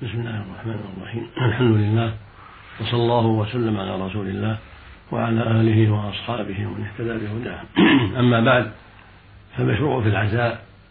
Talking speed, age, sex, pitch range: 120 wpm, 60-79, male, 100-115 Hz